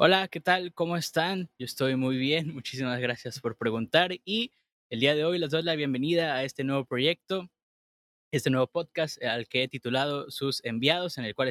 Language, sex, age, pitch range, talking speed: Spanish, male, 20-39, 115-145 Hz, 200 wpm